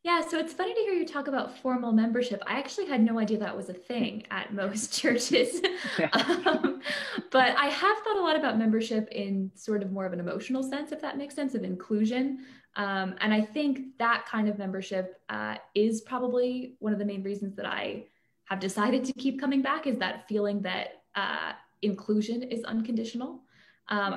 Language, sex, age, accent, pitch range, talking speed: English, female, 20-39, American, 200-255 Hz, 195 wpm